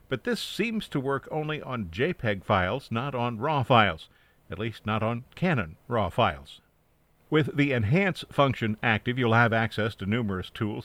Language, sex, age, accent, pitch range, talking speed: English, male, 50-69, American, 105-140 Hz, 170 wpm